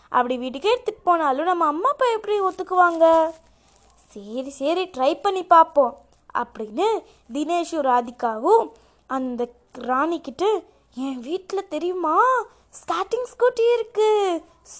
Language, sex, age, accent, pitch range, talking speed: Tamil, female, 20-39, native, 280-425 Hz, 105 wpm